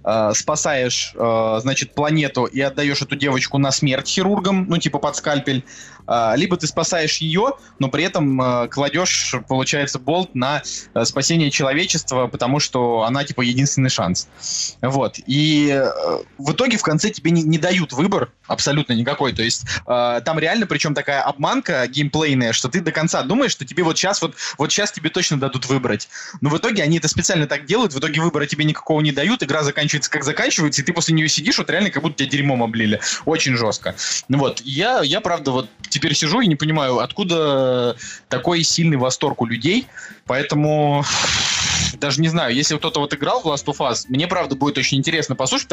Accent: native